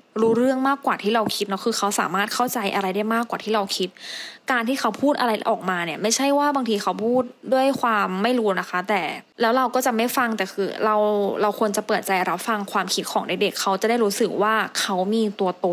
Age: 20-39